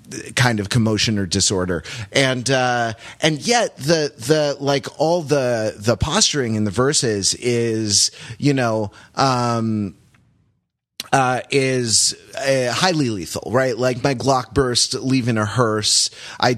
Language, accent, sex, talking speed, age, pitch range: English, American, male, 130 wpm, 30-49, 110-135 Hz